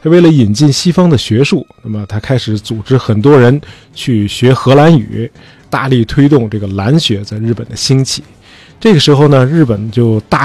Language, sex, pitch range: Chinese, male, 115-150 Hz